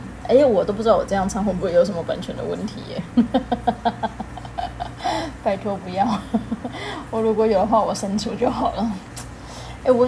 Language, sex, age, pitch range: Chinese, female, 10-29, 195-275 Hz